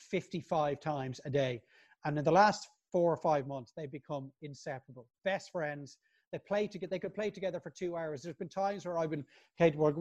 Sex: male